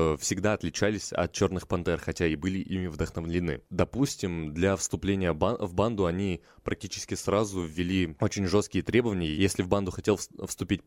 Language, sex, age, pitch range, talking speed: Russian, male, 20-39, 90-105 Hz, 150 wpm